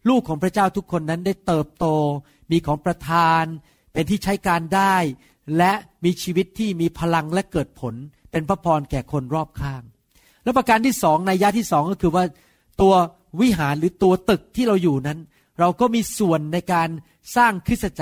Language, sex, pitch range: Thai, male, 150-195 Hz